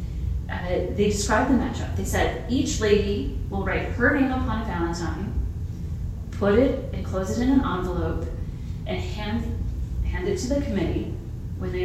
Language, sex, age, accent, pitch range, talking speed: English, female, 30-49, American, 85-100 Hz, 165 wpm